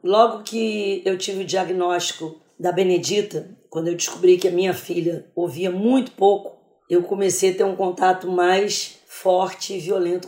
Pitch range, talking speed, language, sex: 180-230 Hz, 165 wpm, Portuguese, female